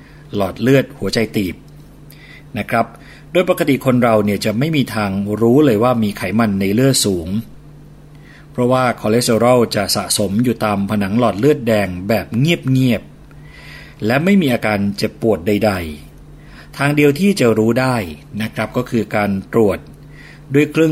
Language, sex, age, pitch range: Thai, male, 30-49, 105-135 Hz